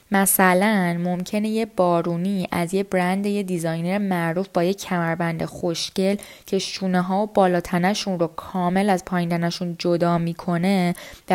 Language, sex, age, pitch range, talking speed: Persian, female, 10-29, 170-195 Hz, 135 wpm